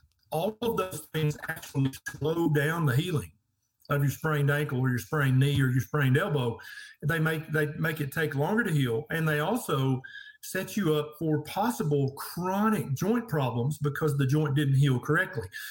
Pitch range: 140-160 Hz